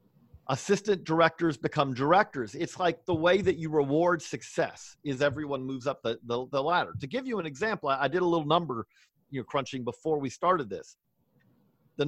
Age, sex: 50-69, male